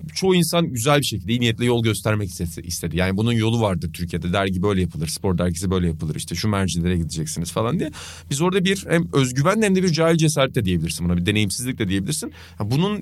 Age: 30-49